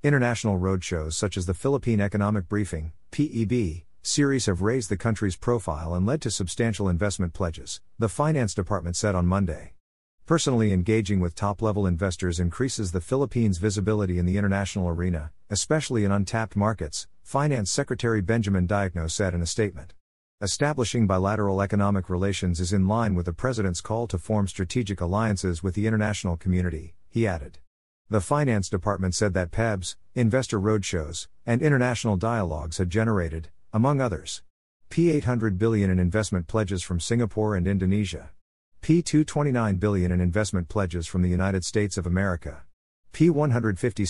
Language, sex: English, male